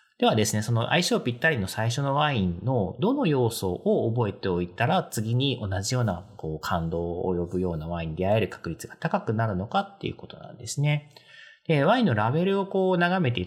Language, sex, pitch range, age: Japanese, male, 90-140 Hz, 40-59